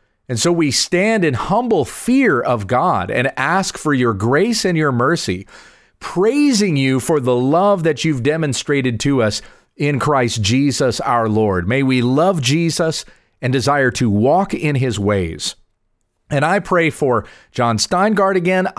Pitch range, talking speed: 120-170 Hz, 160 wpm